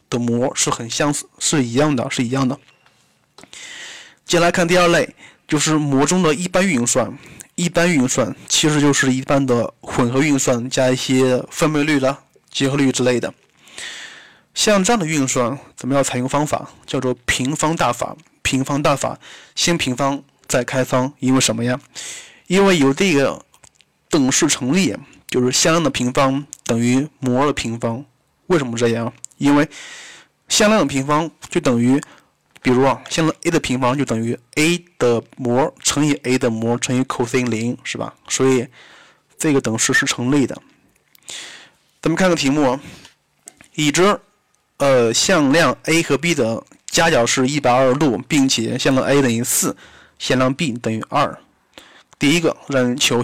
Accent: native